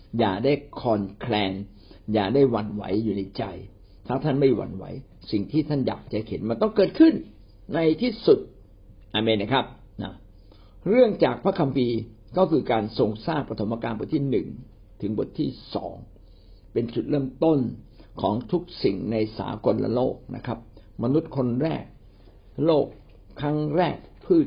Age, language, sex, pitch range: 60-79, Thai, male, 105-135 Hz